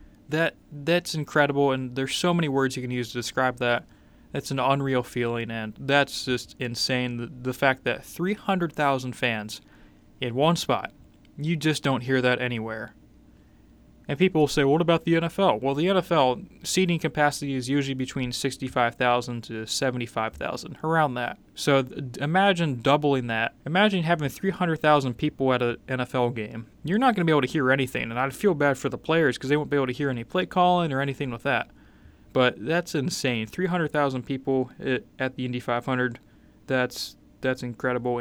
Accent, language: American, English